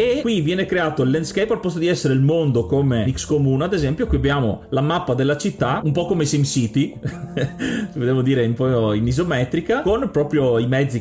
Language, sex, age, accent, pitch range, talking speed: Italian, male, 30-49, native, 130-170 Hz, 200 wpm